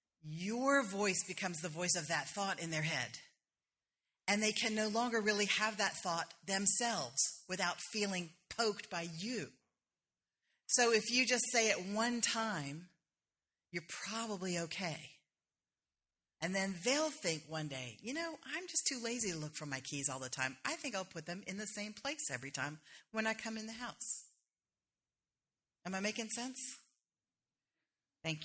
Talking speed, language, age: 165 wpm, English, 40-59